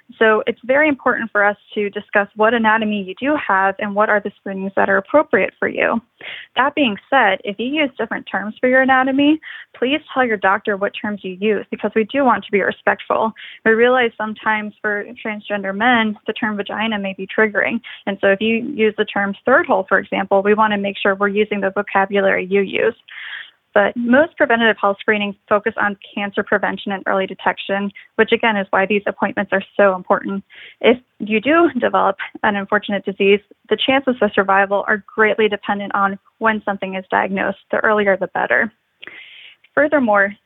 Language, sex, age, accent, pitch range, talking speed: English, female, 10-29, American, 200-235 Hz, 190 wpm